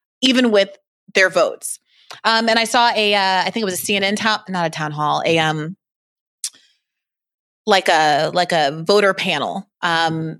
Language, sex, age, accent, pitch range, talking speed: English, female, 30-49, American, 170-200 Hz, 175 wpm